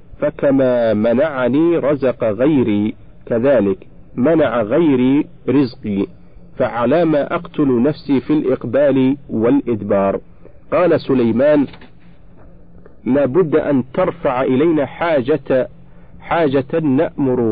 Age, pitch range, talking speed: 50-69, 120-165 Hz, 80 wpm